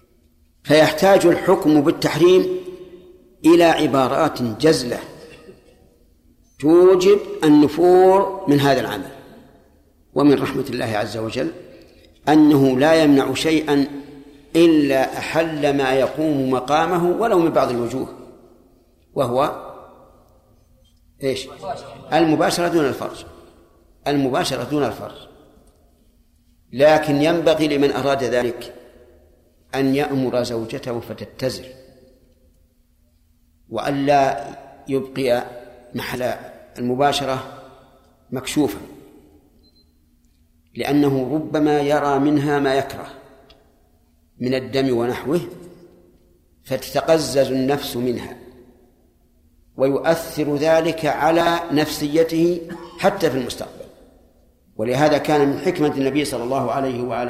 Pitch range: 110-150 Hz